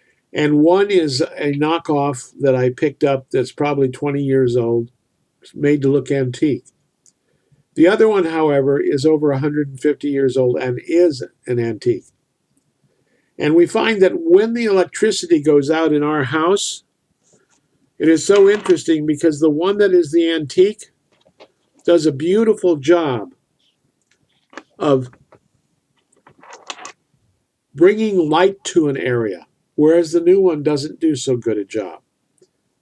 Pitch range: 140-180 Hz